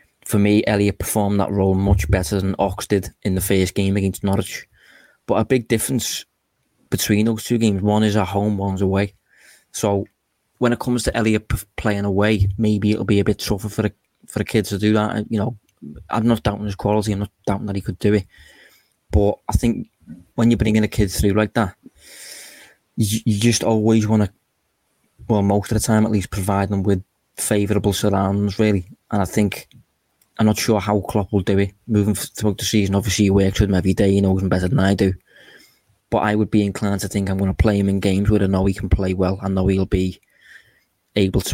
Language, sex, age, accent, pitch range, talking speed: English, male, 20-39, British, 100-110 Hz, 225 wpm